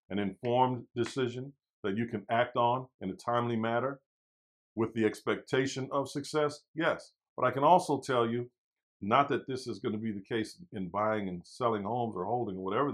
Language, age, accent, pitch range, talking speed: English, 50-69, American, 105-130 Hz, 195 wpm